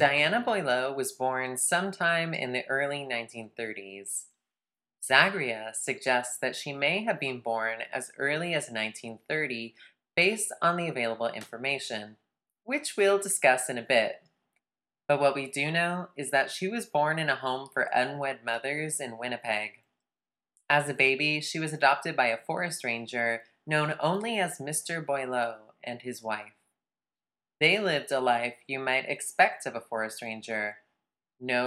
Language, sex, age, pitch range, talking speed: English, female, 20-39, 115-150 Hz, 150 wpm